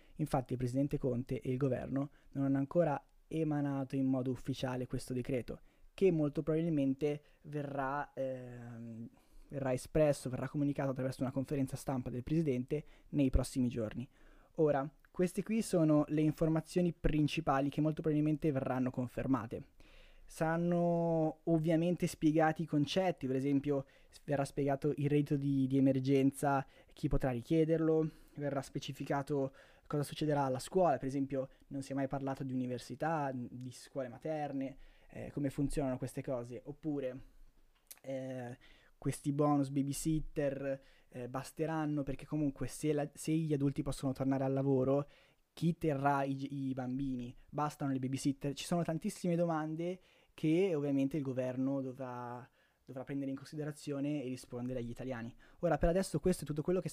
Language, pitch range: Italian, 130-155 Hz